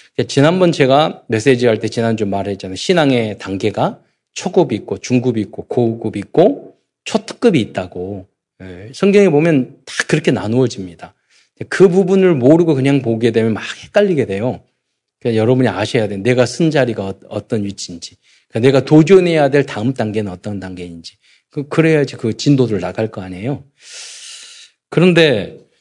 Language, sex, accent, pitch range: Korean, male, native, 110-170 Hz